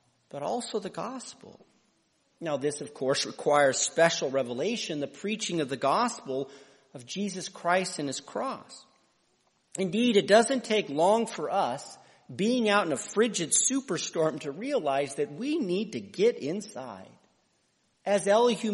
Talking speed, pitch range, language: 145 wpm, 155-245 Hz, English